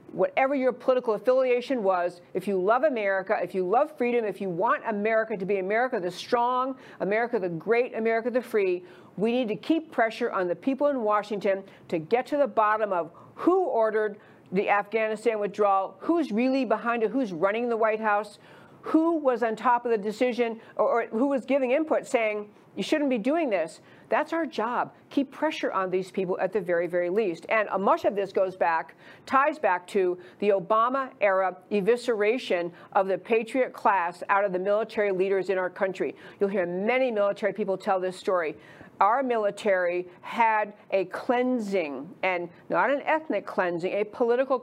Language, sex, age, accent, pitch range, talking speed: English, female, 50-69, American, 190-250 Hz, 180 wpm